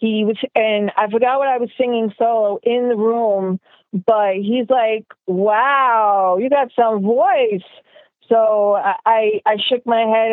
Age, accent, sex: 40-59, American, female